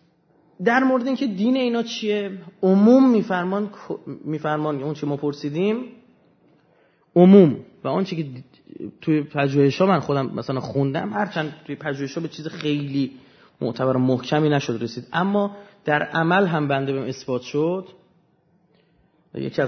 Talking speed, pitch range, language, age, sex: 145 wpm, 125-180 Hz, Persian, 30-49, male